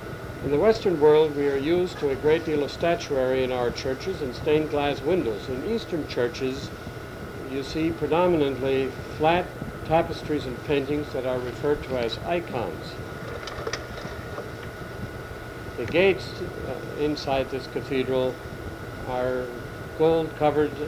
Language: English